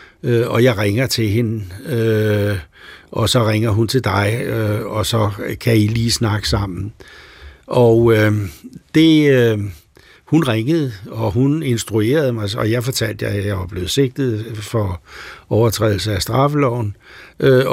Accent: native